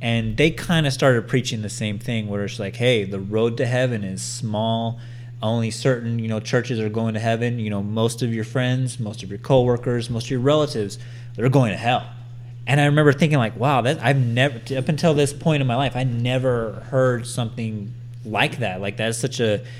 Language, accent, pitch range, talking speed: English, American, 115-130 Hz, 220 wpm